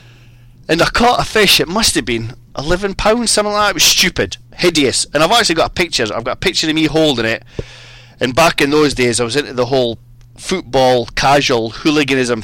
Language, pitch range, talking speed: English, 120-155 Hz, 210 wpm